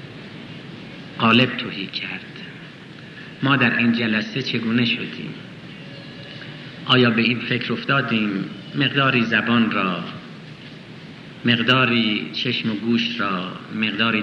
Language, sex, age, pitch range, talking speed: Persian, male, 50-69, 105-130 Hz, 95 wpm